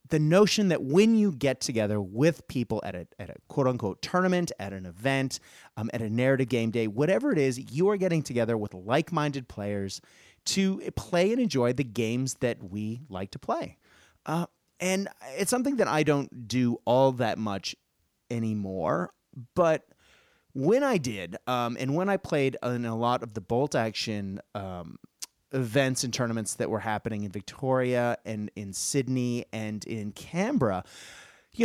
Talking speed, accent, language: 170 wpm, American, English